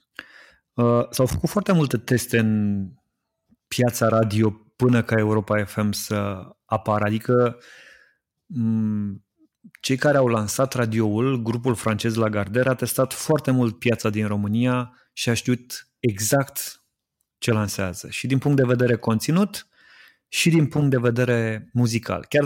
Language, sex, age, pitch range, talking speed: Romanian, male, 30-49, 110-130 Hz, 140 wpm